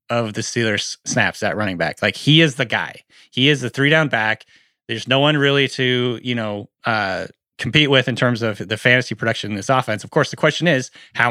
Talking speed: 230 wpm